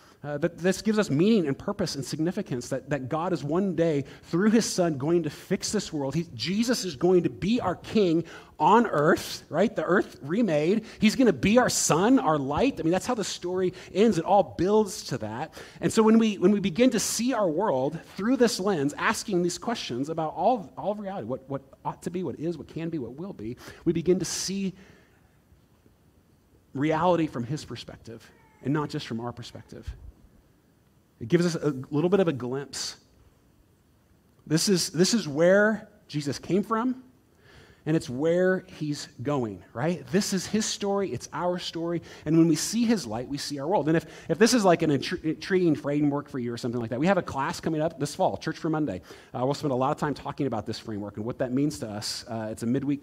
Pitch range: 135-190 Hz